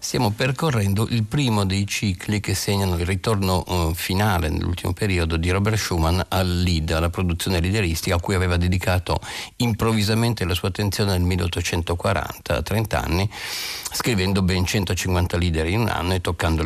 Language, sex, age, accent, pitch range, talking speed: Italian, male, 50-69, native, 85-110 Hz, 155 wpm